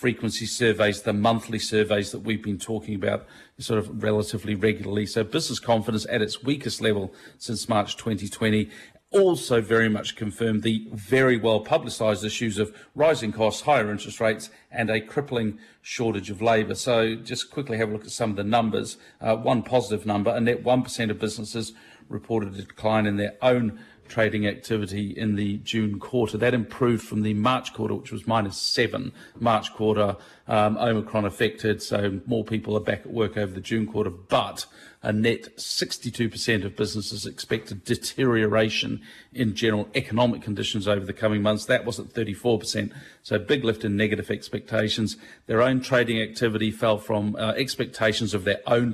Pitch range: 105-115 Hz